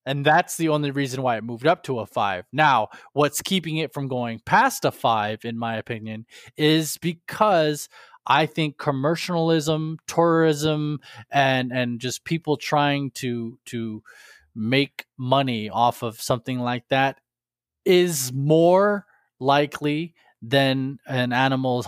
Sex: male